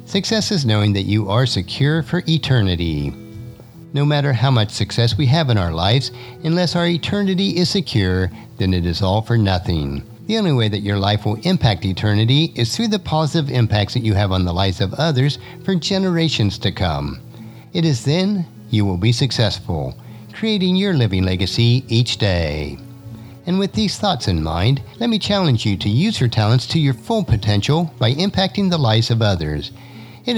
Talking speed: 185 wpm